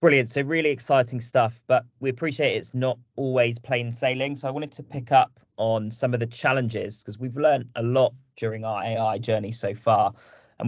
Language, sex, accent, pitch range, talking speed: English, male, British, 110-125 Hz, 200 wpm